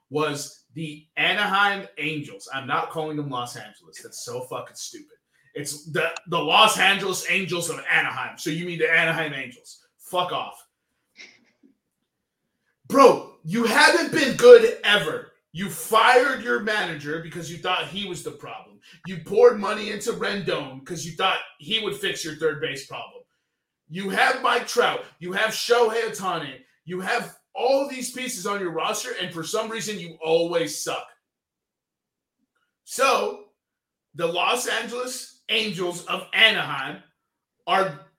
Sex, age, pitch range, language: male, 30-49, 160-225 Hz, English